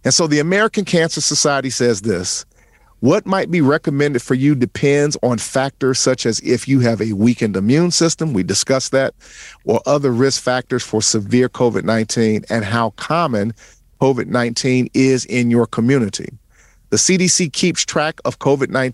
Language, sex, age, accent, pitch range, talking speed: English, male, 50-69, American, 115-150 Hz, 160 wpm